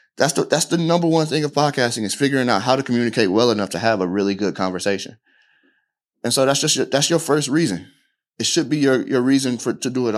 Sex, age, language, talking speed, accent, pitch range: male, 30-49, English, 250 wpm, American, 100-135 Hz